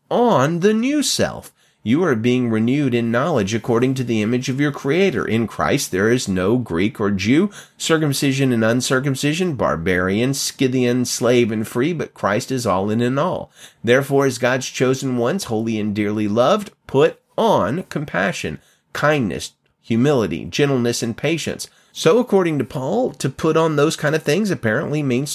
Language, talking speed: English, 165 wpm